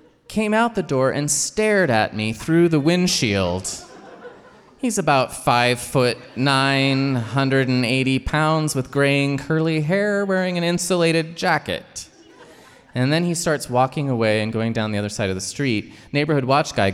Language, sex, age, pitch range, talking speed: English, male, 20-39, 125-195 Hz, 165 wpm